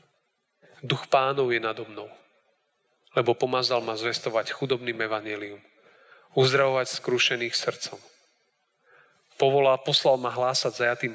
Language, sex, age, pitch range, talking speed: Slovak, male, 40-59, 115-130 Hz, 95 wpm